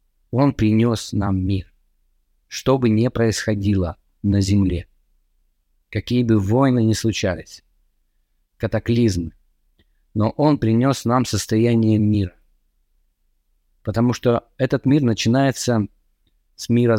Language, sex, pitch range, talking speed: Russian, male, 90-120 Hz, 100 wpm